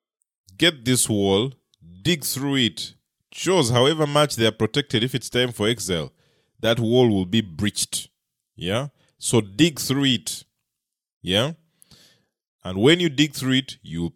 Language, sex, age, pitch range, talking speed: English, male, 20-39, 95-140 Hz, 155 wpm